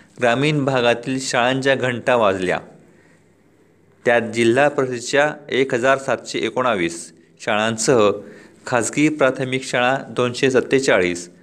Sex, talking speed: male, 95 wpm